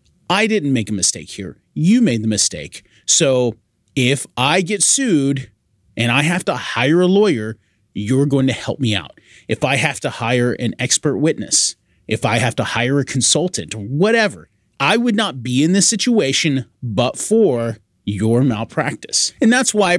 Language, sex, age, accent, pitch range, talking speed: English, male, 30-49, American, 115-160 Hz, 175 wpm